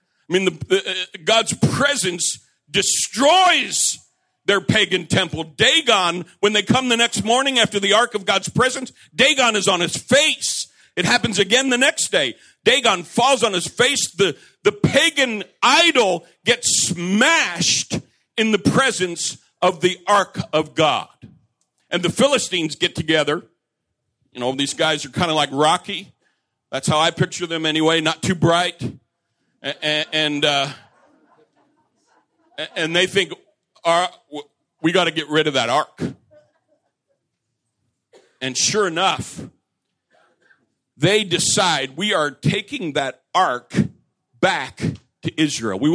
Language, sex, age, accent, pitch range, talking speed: English, male, 50-69, American, 155-230 Hz, 135 wpm